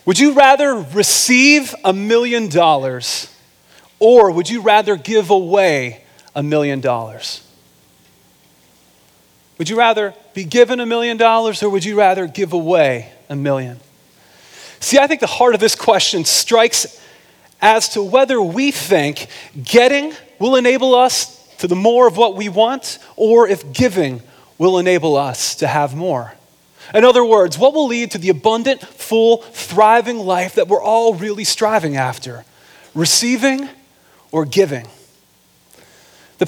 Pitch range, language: 145-230 Hz, English